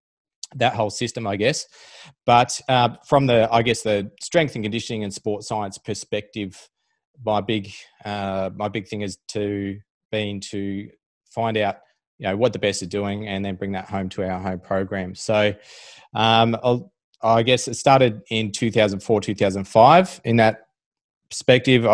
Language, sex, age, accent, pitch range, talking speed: English, male, 20-39, Australian, 100-120 Hz, 160 wpm